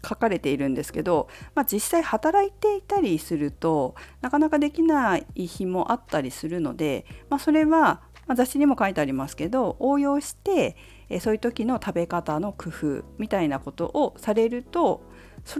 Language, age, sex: Japanese, 50-69, female